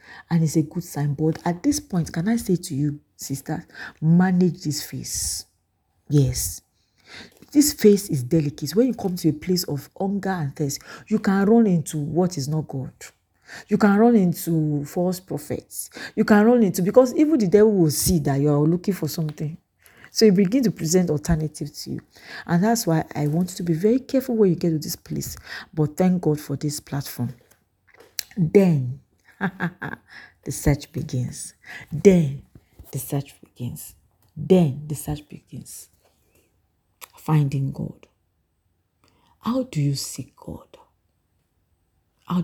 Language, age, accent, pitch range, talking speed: English, 40-59, Nigerian, 140-185 Hz, 160 wpm